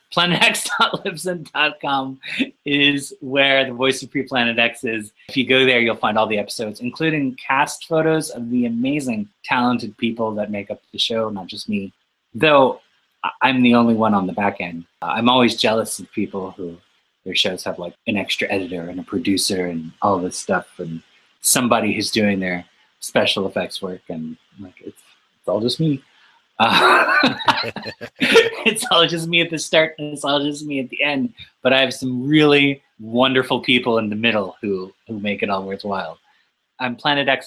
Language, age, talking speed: English, 30-49, 180 wpm